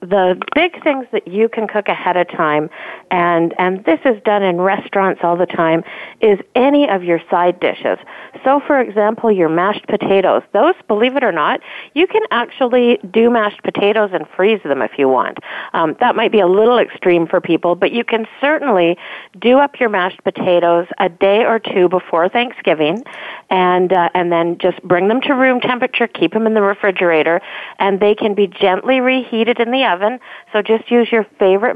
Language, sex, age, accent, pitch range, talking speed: English, female, 50-69, American, 180-230 Hz, 195 wpm